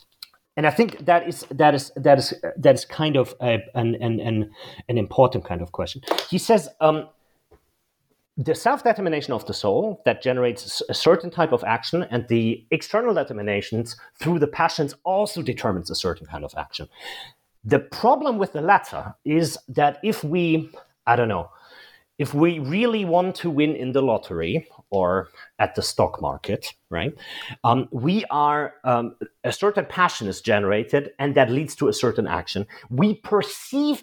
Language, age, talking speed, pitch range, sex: English, 30-49, 170 wpm, 120-175 Hz, male